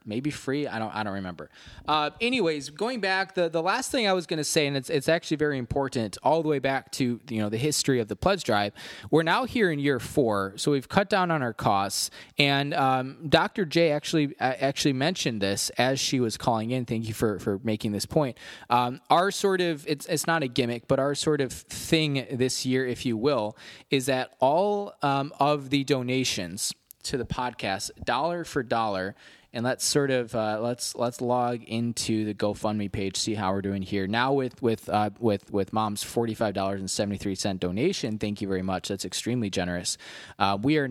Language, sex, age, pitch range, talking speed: English, male, 20-39, 110-150 Hz, 215 wpm